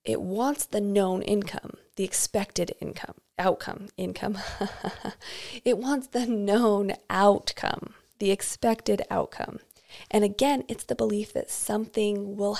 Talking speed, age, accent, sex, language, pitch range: 125 wpm, 20-39, American, female, English, 185-225 Hz